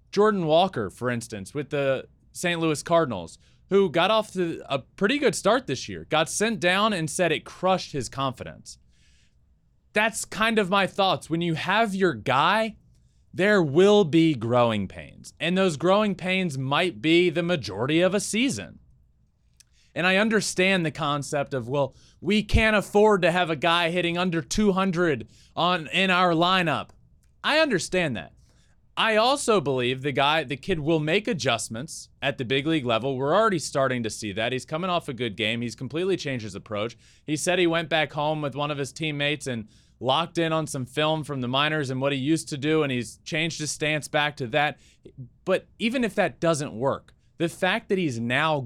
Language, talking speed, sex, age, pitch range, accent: English, 190 wpm, male, 20-39, 130-185 Hz, American